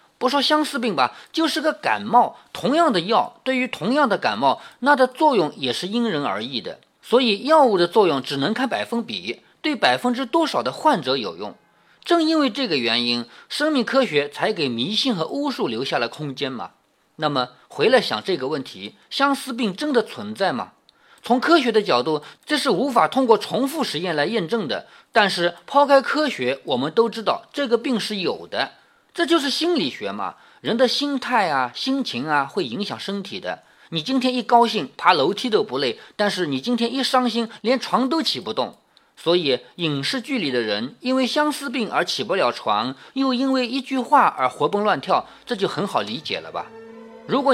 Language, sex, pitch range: Chinese, male, 200-275 Hz